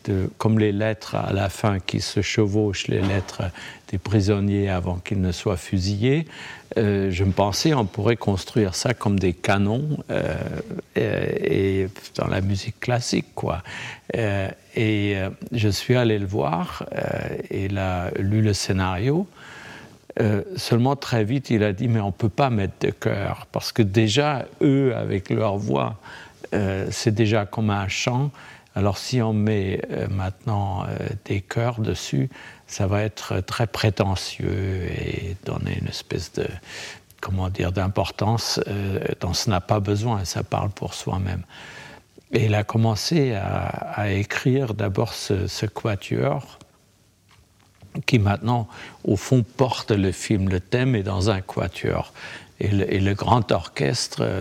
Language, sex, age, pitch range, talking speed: French, male, 60-79, 95-115 Hz, 155 wpm